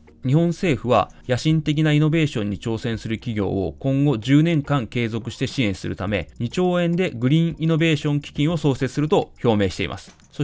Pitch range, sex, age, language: 105-160 Hz, male, 20-39, Japanese